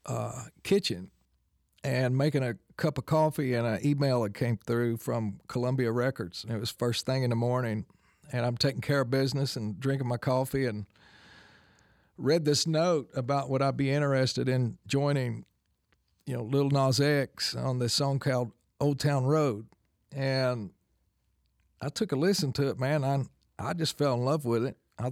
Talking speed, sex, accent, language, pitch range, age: 180 wpm, male, American, English, 120-150 Hz, 50-69